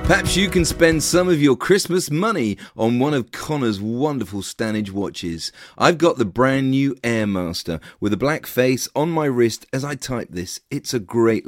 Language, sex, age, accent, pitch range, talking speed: English, male, 40-59, British, 105-145 Hz, 190 wpm